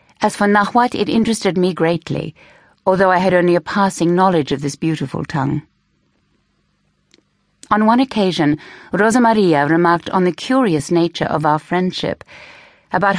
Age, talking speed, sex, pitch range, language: 60-79, 145 wpm, female, 165-205 Hz, English